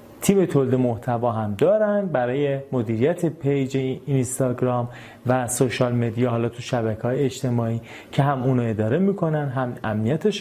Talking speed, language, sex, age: 145 wpm, Persian, male, 30-49